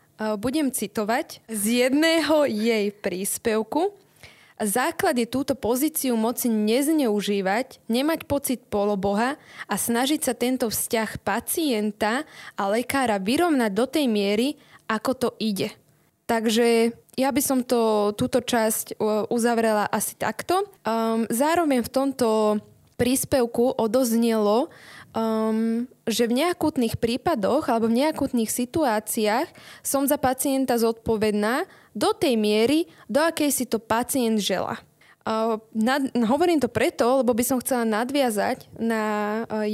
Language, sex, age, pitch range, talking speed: Slovak, female, 20-39, 220-265 Hz, 120 wpm